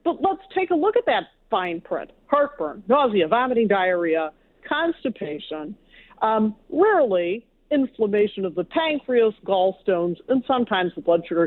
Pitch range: 185-295 Hz